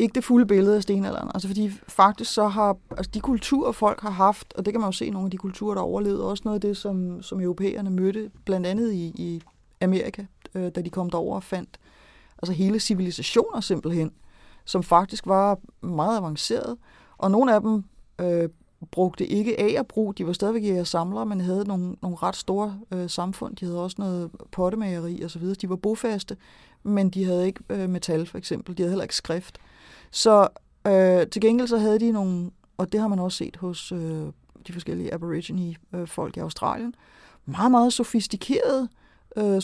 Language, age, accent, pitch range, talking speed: Danish, 30-49, native, 180-215 Hz, 195 wpm